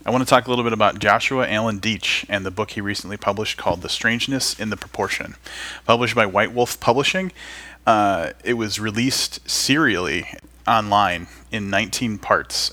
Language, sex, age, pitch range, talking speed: English, male, 30-49, 100-115 Hz, 175 wpm